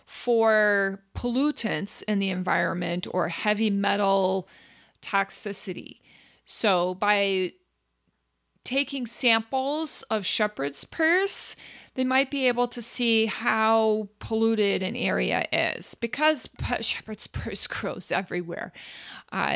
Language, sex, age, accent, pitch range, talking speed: English, female, 40-59, American, 195-245 Hz, 100 wpm